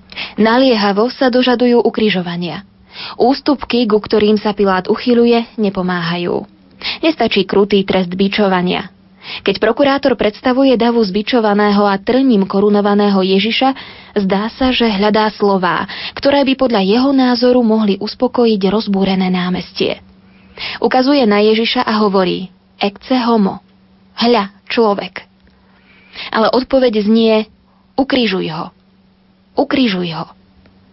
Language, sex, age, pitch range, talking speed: Slovak, female, 20-39, 195-245 Hz, 105 wpm